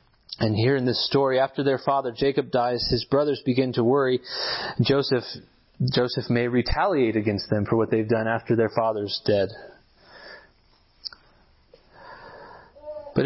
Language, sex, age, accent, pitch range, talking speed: English, male, 30-49, American, 120-145 Hz, 135 wpm